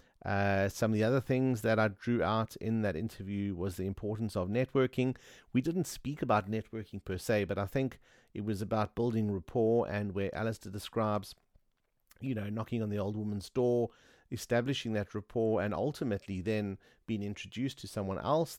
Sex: male